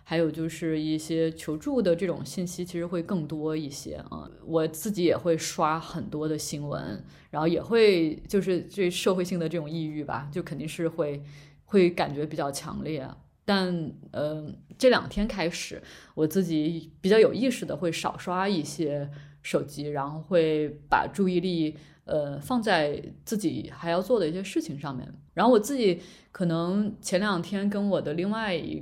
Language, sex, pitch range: Chinese, female, 155-195 Hz